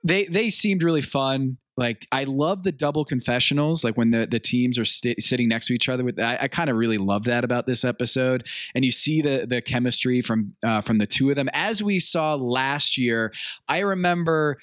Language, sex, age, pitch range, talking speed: English, male, 20-39, 120-150 Hz, 220 wpm